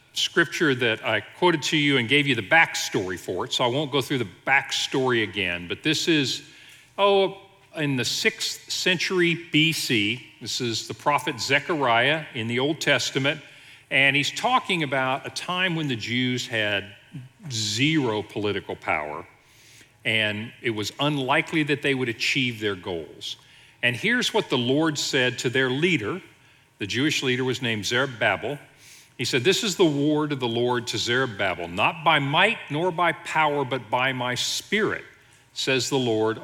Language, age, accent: English, 50-69, American